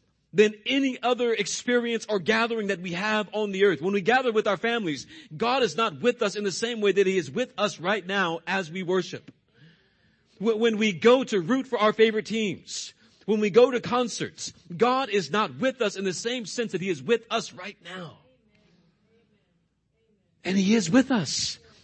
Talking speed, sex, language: 200 wpm, male, English